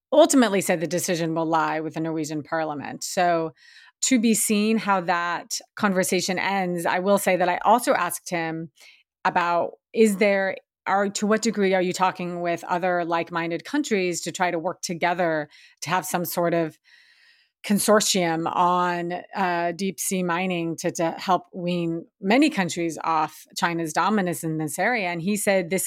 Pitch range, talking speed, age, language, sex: 170-210 Hz, 165 wpm, 30-49, English, female